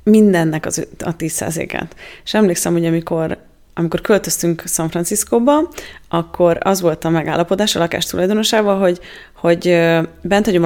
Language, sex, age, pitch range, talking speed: Hungarian, female, 30-49, 170-210 Hz, 130 wpm